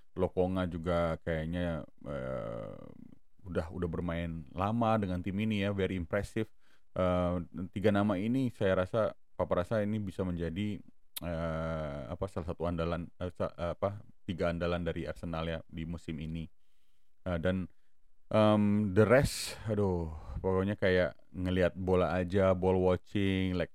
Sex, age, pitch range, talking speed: male, 30-49, 85-105 Hz, 135 wpm